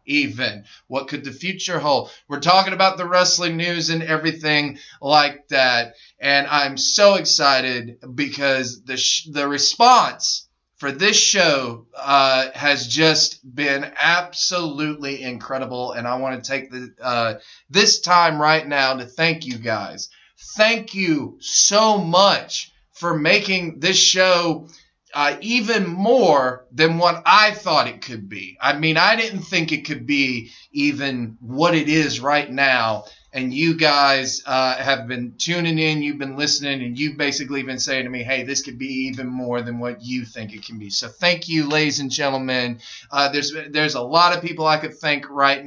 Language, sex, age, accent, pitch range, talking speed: English, male, 20-39, American, 130-170 Hz, 165 wpm